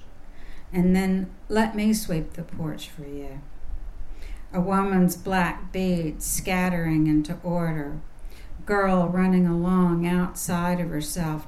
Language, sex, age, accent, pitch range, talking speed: English, female, 60-79, American, 170-205 Hz, 115 wpm